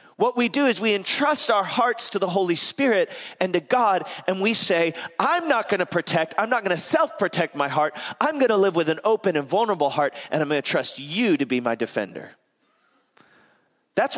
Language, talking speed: English, 215 wpm